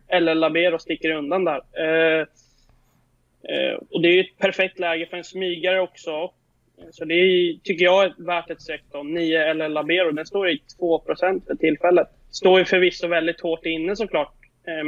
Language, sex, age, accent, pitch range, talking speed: Swedish, male, 20-39, native, 155-180 Hz, 180 wpm